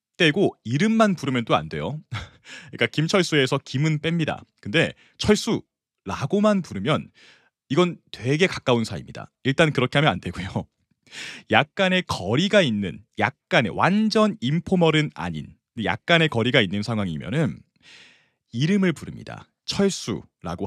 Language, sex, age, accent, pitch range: Korean, male, 30-49, native, 115-180 Hz